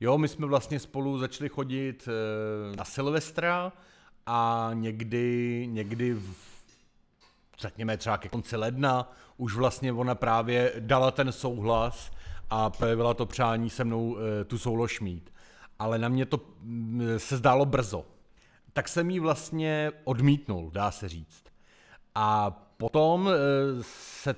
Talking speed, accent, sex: 125 wpm, native, male